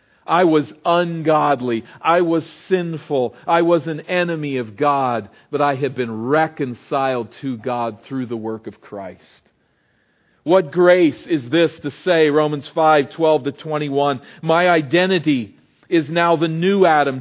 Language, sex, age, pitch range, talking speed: English, male, 40-59, 130-170 Hz, 145 wpm